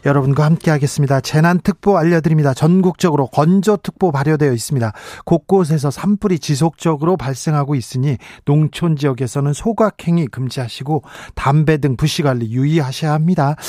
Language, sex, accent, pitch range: Korean, male, native, 145-195 Hz